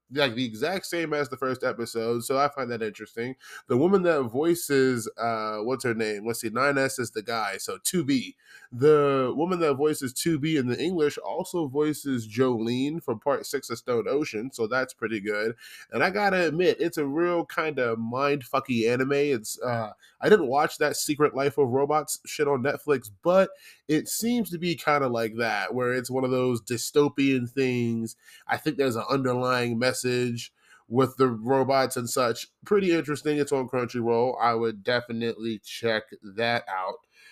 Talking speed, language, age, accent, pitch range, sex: 180 wpm, English, 20-39, American, 115-150 Hz, male